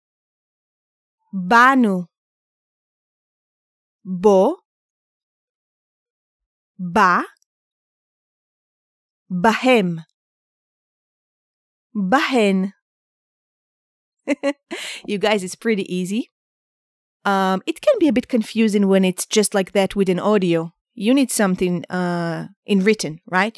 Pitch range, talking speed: 195-265 Hz, 80 wpm